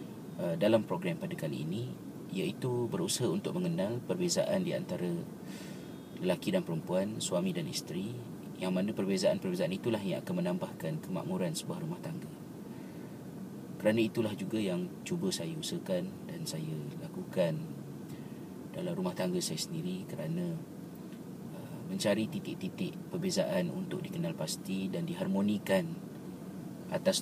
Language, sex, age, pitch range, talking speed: Malay, male, 30-49, 165-185 Hz, 115 wpm